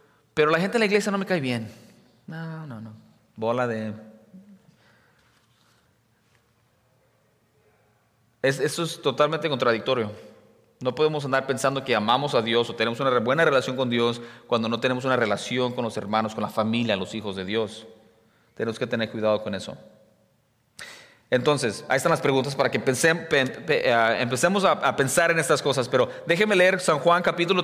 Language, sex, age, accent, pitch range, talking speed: English, male, 30-49, Mexican, 120-165 Hz, 175 wpm